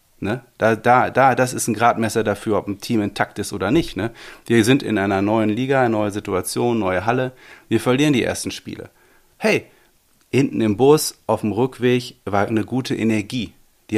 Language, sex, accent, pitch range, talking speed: German, male, German, 105-120 Hz, 195 wpm